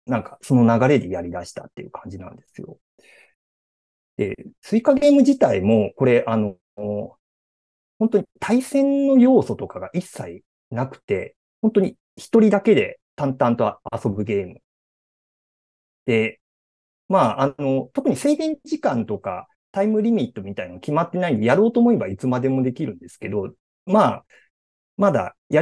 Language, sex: Japanese, male